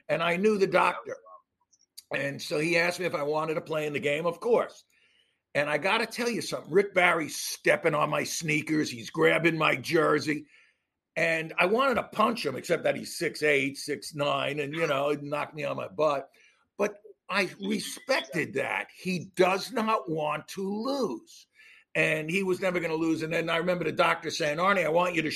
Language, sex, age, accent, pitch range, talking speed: English, male, 60-79, American, 155-215 Hz, 205 wpm